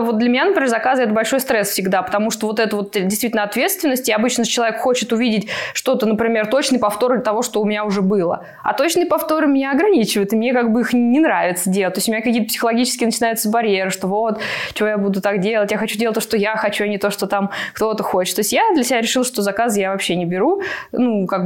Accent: native